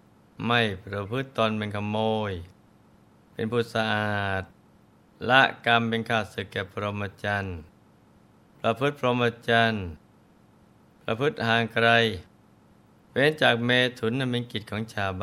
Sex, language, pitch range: male, Thai, 100-120 Hz